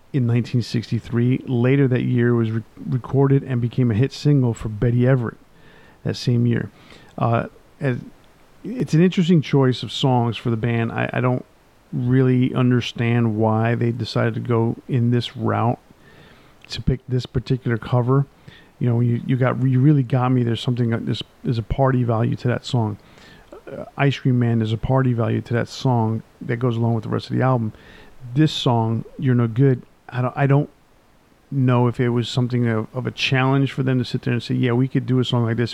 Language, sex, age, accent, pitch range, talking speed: English, male, 50-69, American, 115-135 Hz, 205 wpm